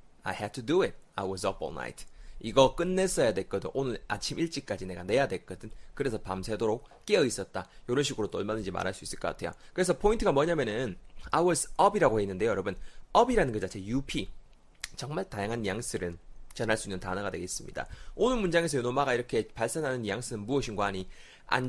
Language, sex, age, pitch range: Korean, male, 30-49, 110-175 Hz